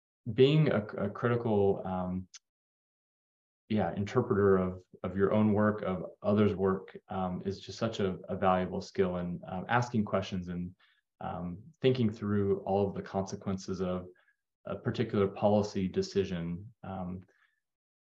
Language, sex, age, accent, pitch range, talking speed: English, male, 20-39, American, 95-105 Hz, 135 wpm